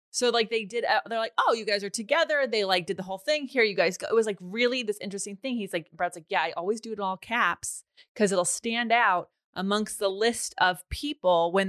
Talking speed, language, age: 255 wpm, English, 20-39